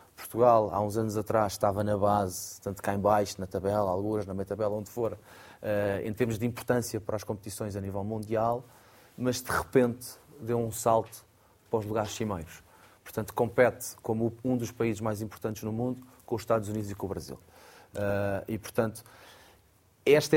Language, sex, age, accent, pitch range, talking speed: Portuguese, male, 20-39, Portuguese, 100-120 Hz, 175 wpm